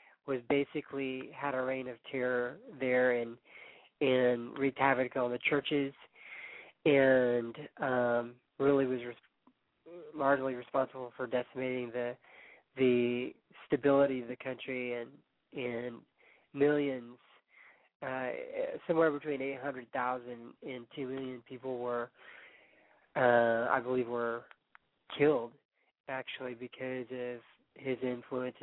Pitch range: 125-140 Hz